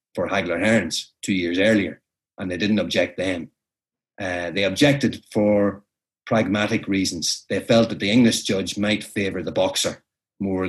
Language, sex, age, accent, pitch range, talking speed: English, male, 30-49, Irish, 95-110 Hz, 155 wpm